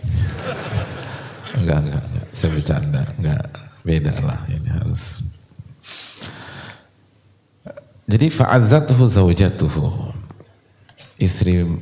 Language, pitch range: English, 90-120 Hz